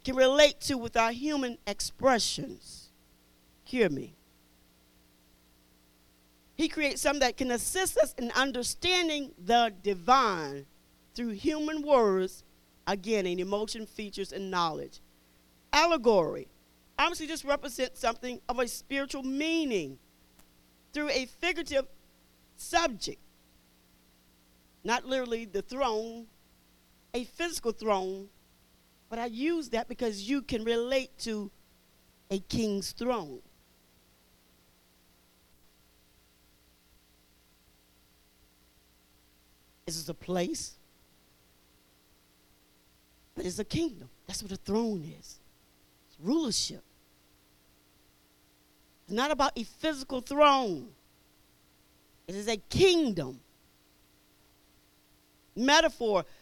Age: 40-59